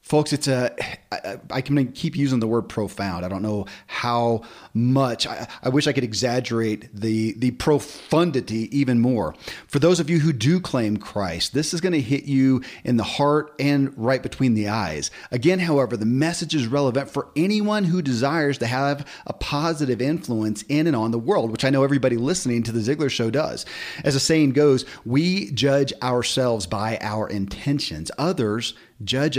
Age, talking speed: 40-59, 185 wpm